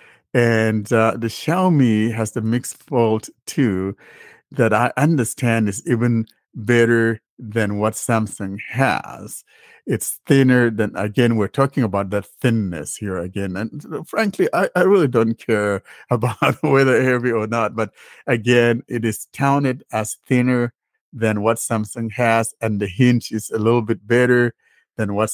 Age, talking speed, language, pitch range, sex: 50-69, 150 wpm, English, 105-125 Hz, male